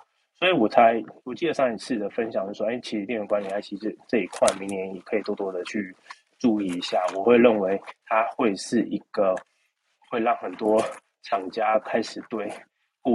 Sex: male